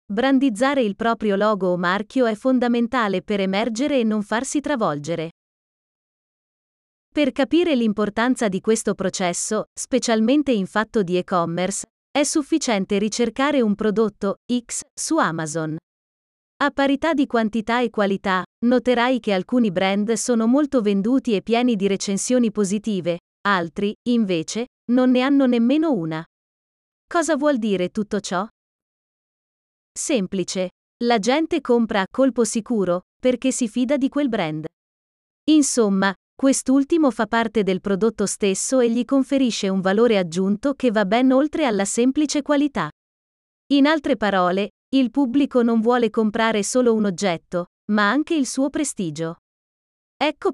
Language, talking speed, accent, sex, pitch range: Italian, 135 wpm, native, female, 200-260 Hz